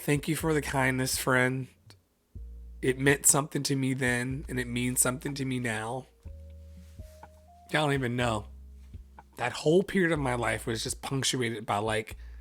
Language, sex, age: English, male, 30-49